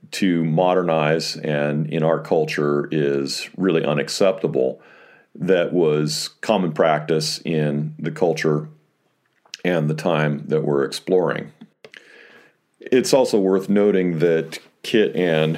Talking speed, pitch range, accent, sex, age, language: 110 wpm, 75-80 Hz, American, male, 40-59, English